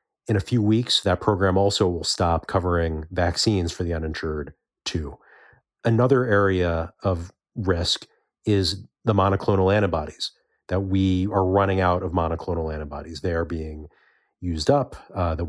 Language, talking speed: English, 145 wpm